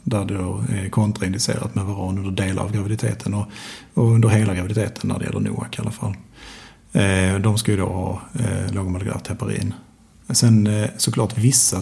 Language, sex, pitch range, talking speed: Swedish, male, 100-115 Hz, 155 wpm